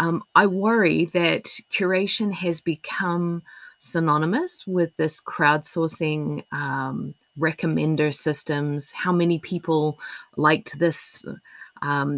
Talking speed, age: 100 wpm, 30-49